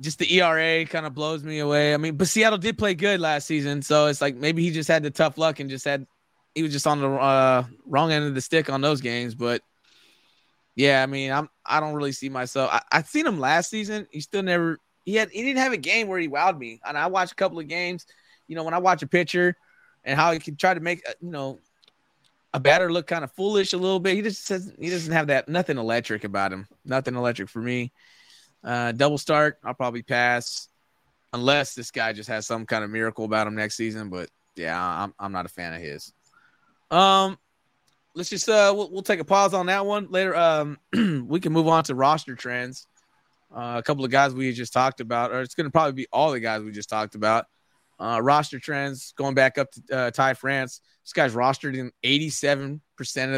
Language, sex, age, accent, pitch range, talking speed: English, male, 20-39, American, 125-170 Hz, 235 wpm